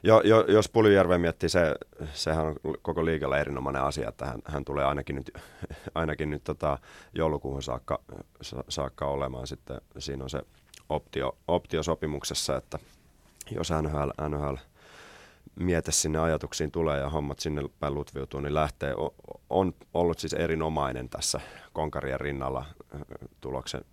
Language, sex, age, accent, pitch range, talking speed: Finnish, male, 30-49, native, 70-80 Hz, 140 wpm